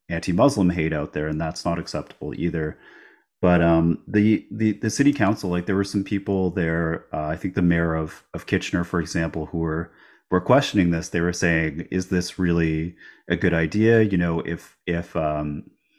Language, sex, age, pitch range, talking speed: English, male, 30-49, 80-95 Hz, 190 wpm